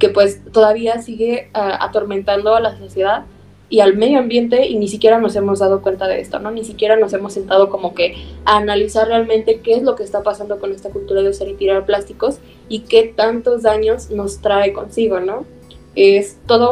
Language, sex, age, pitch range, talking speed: Spanish, female, 20-39, 195-220 Hz, 205 wpm